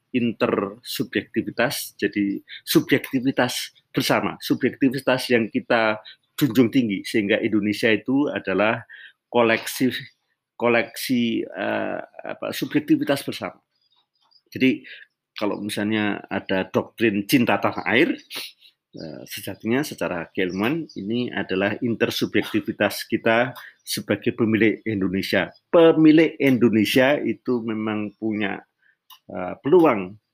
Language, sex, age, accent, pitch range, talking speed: Indonesian, male, 50-69, native, 100-120 Hz, 85 wpm